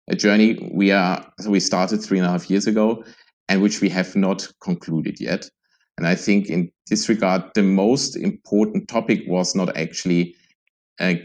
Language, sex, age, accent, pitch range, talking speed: English, male, 50-69, German, 90-105 Hz, 175 wpm